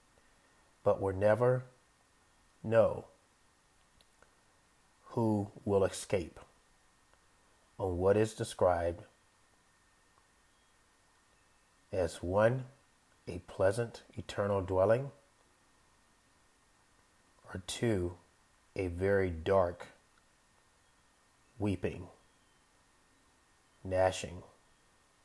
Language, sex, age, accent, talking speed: English, male, 40-59, American, 55 wpm